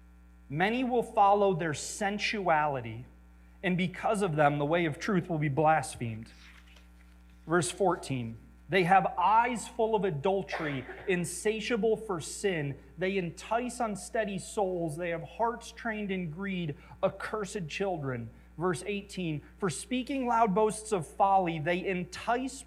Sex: male